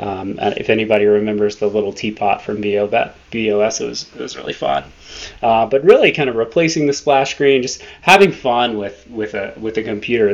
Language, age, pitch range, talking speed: English, 20-39, 105-130 Hz, 190 wpm